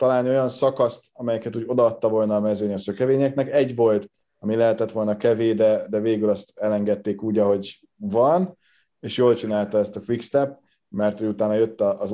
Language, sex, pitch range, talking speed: Hungarian, male, 105-130 Hz, 175 wpm